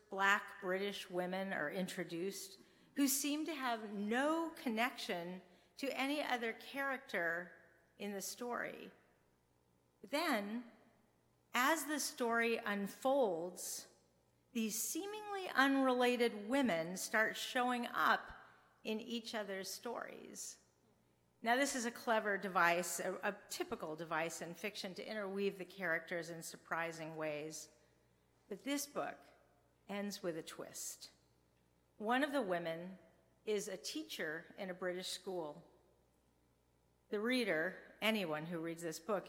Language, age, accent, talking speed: English, 50-69, American, 120 wpm